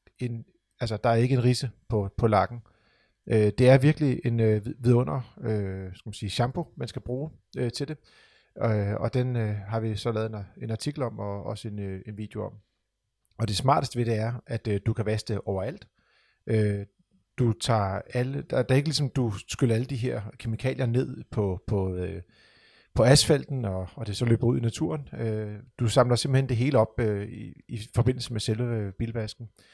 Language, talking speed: Danish, 175 wpm